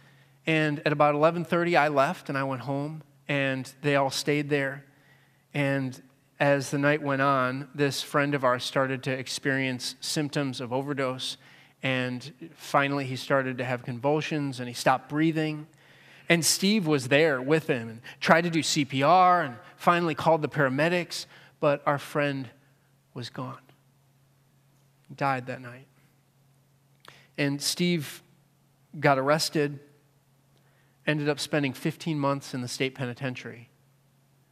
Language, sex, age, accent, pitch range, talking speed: English, male, 30-49, American, 135-155 Hz, 135 wpm